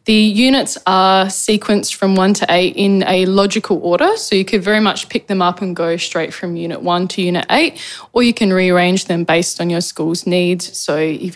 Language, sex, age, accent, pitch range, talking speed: English, female, 10-29, Australian, 180-210 Hz, 215 wpm